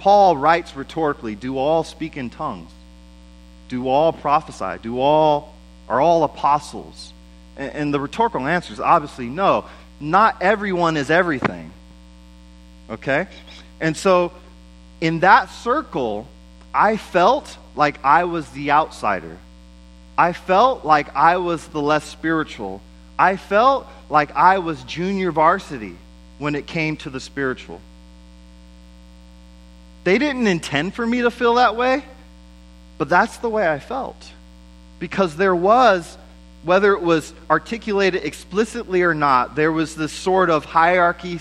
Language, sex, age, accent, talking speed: English, male, 30-49, American, 135 wpm